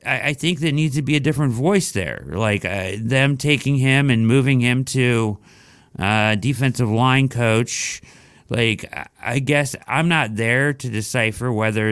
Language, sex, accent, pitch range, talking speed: English, male, American, 105-140 Hz, 160 wpm